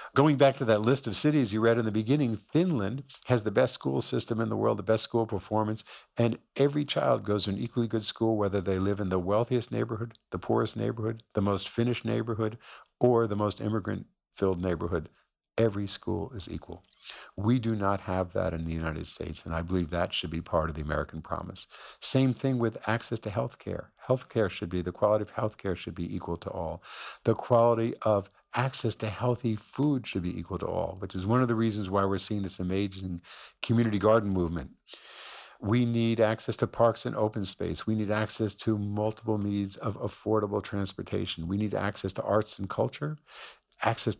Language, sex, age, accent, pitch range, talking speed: English, male, 50-69, American, 95-115 Hz, 200 wpm